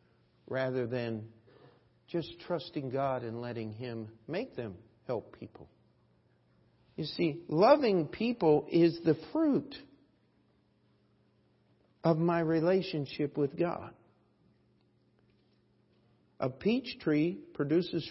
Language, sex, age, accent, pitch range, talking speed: English, male, 50-69, American, 130-180 Hz, 95 wpm